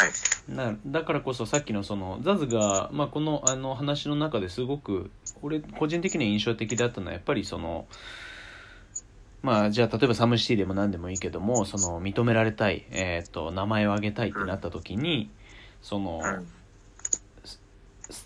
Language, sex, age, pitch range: Japanese, male, 30-49, 100-130 Hz